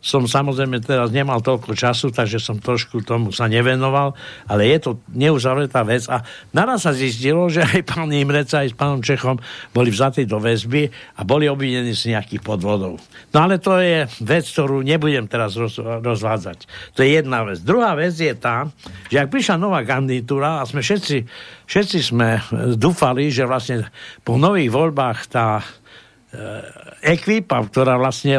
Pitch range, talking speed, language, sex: 115-145 Hz, 160 wpm, Slovak, male